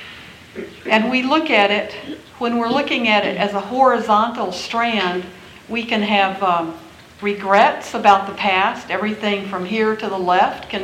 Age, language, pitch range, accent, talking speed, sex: 60-79, English, 175-210 Hz, American, 160 wpm, female